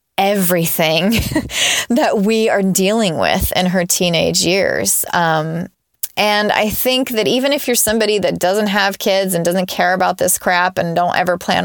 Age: 20-39